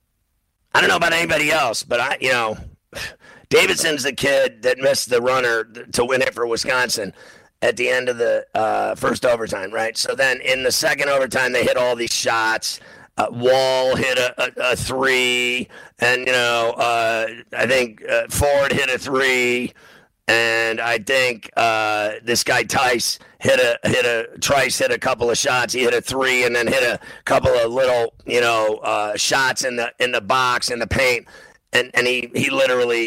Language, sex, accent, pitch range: English, male, American, 115-135 Hz